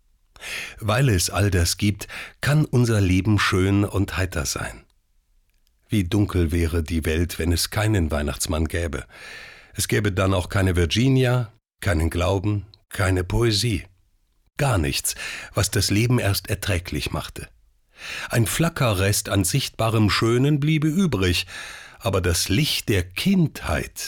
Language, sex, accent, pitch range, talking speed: German, male, German, 90-125 Hz, 130 wpm